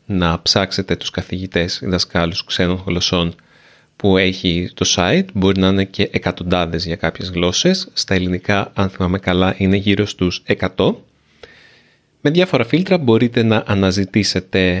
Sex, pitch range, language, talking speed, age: male, 90-120 Hz, Greek, 140 wpm, 30-49